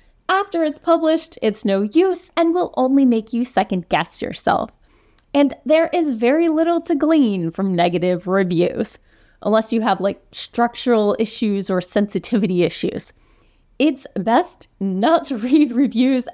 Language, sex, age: English, female, 30-49